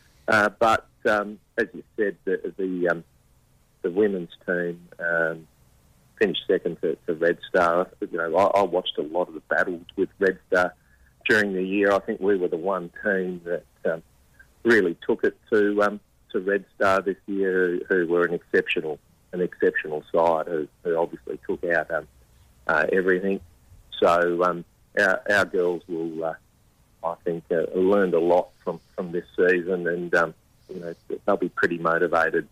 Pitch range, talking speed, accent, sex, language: 85-100 Hz, 175 wpm, Australian, male, English